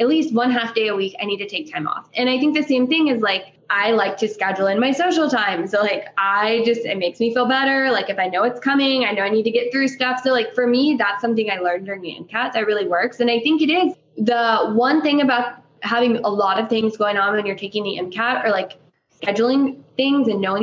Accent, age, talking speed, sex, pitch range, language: American, 10-29, 270 wpm, female, 205-255 Hz, English